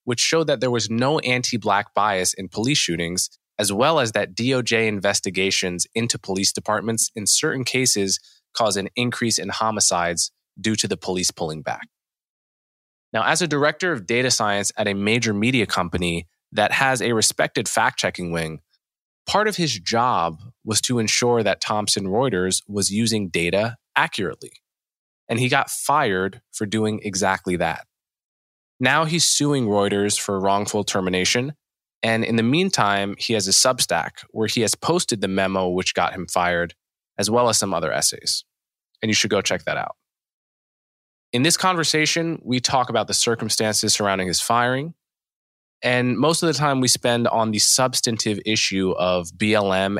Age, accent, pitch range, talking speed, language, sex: 20-39, American, 95-125 Hz, 165 wpm, English, male